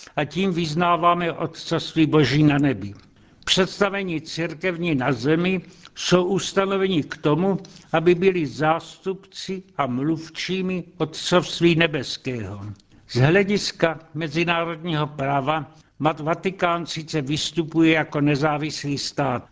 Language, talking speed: Czech, 100 wpm